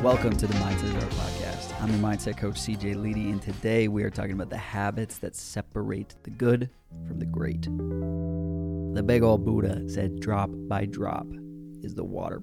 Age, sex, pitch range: 20-39, male, 100-110 Hz